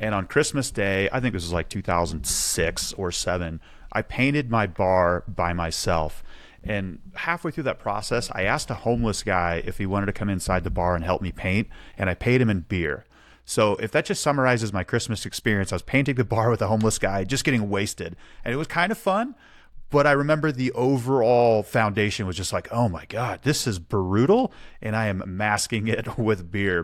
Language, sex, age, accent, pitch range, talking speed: English, male, 30-49, American, 95-135 Hz, 210 wpm